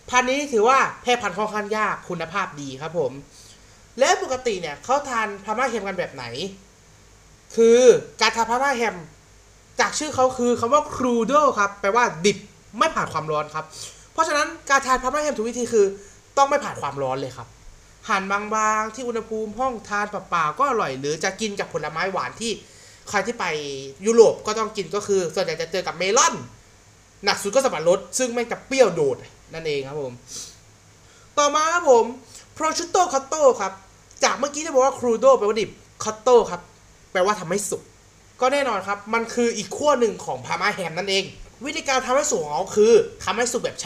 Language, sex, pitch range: Thai, male, 190-270 Hz